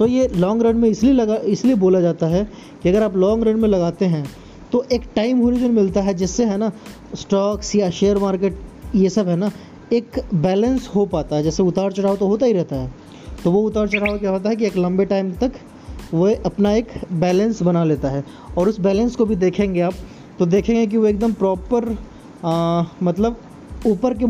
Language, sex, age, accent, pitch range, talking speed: Hindi, male, 20-39, native, 175-215 Hz, 205 wpm